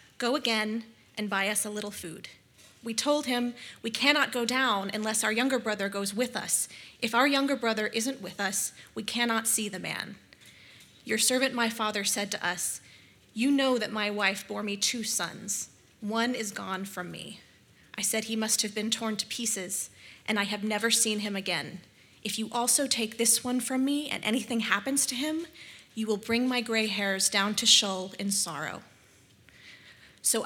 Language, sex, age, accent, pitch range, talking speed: English, female, 30-49, American, 200-235 Hz, 190 wpm